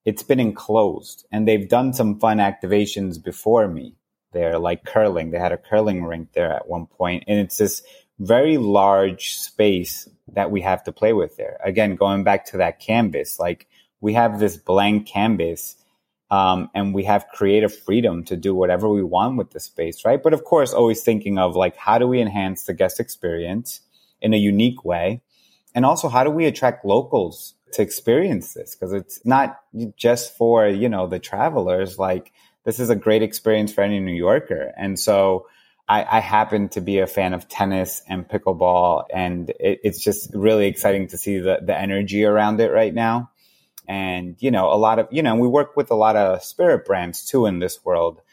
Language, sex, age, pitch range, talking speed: English, male, 30-49, 90-110 Hz, 195 wpm